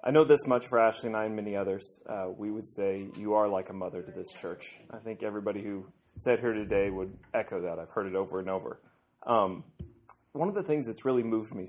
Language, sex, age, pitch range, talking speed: English, male, 30-49, 100-125 Hz, 245 wpm